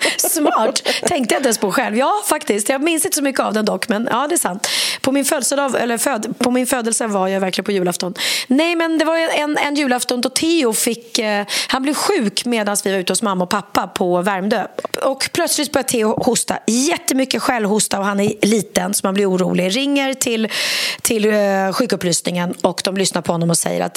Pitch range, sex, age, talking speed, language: 200-275 Hz, female, 30-49, 215 wpm, Swedish